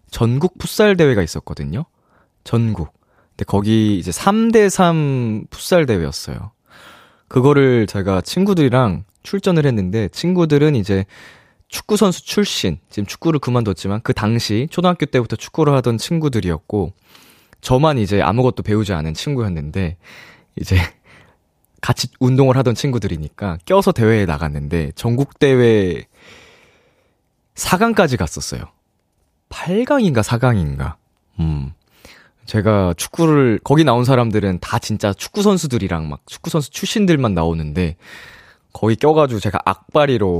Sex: male